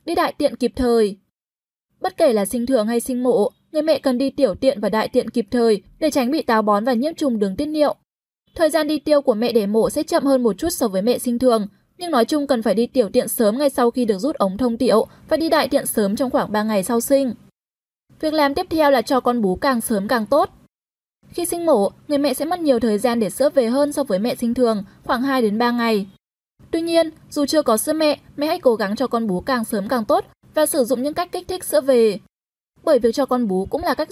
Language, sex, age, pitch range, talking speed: Vietnamese, female, 10-29, 235-300 Hz, 260 wpm